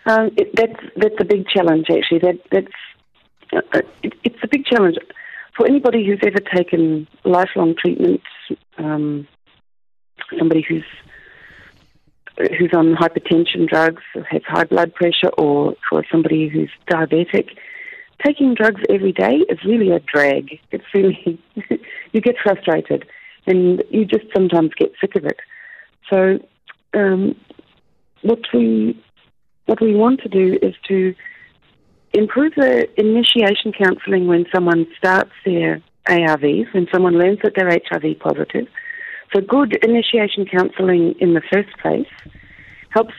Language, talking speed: English, 135 wpm